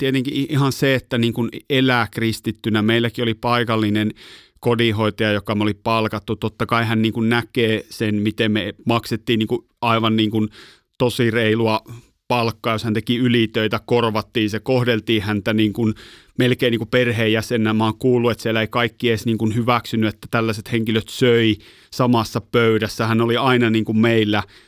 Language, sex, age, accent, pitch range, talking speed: Finnish, male, 30-49, native, 110-120 Hz, 155 wpm